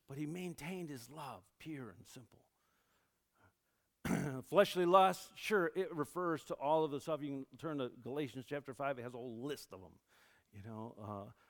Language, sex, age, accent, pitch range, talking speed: English, male, 50-69, American, 115-150 Hz, 185 wpm